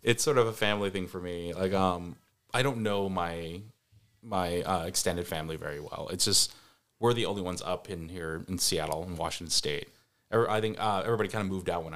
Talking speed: 220 wpm